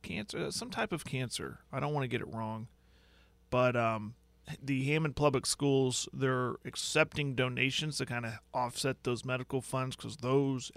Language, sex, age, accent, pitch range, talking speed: English, male, 40-59, American, 120-145 Hz, 165 wpm